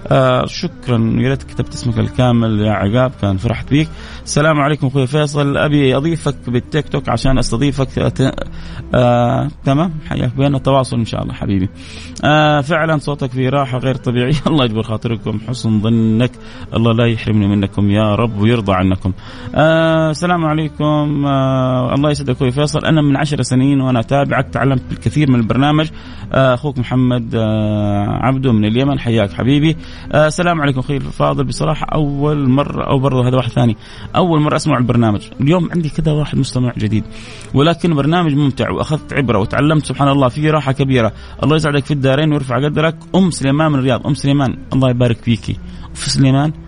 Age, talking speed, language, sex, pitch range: 30-49, 165 wpm, Arabic, male, 110-145 Hz